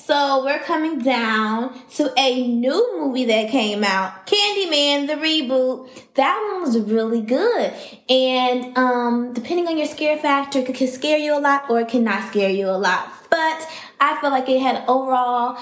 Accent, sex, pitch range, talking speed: American, female, 220-275 Hz, 180 wpm